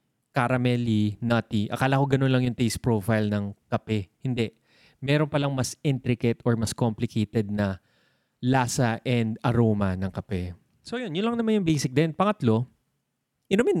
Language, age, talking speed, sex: Filipino, 20-39, 150 wpm, male